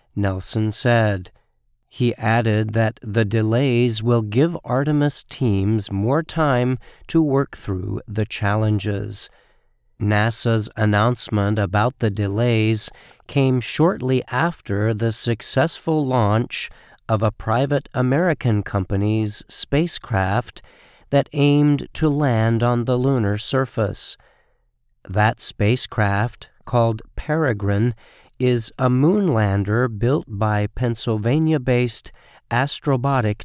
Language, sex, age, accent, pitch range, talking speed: English, male, 50-69, American, 105-130 Hz, 100 wpm